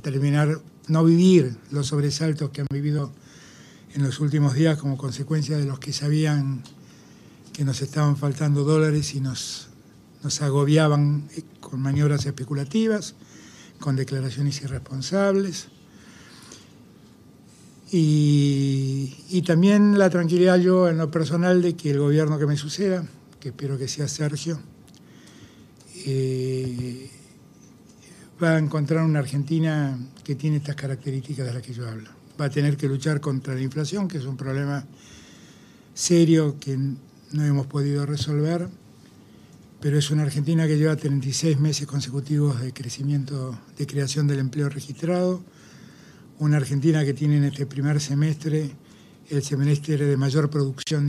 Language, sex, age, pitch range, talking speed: Spanish, male, 60-79, 140-155 Hz, 135 wpm